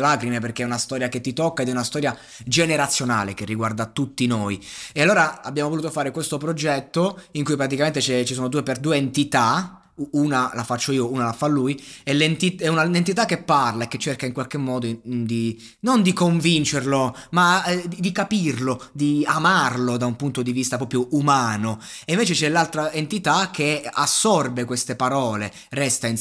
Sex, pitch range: male, 120-145 Hz